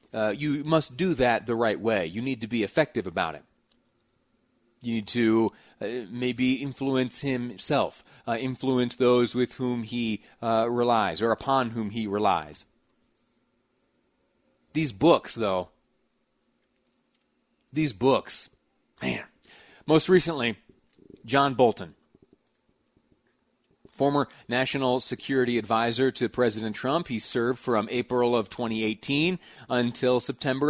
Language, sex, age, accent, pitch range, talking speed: English, male, 30-49, American, 115-140 Hz, 115 wpm